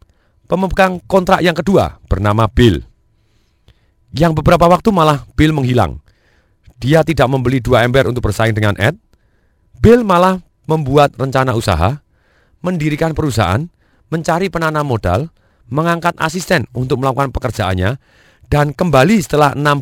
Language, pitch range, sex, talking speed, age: Indonesian, 105-145 Hz, male, 120 wpm, 40-59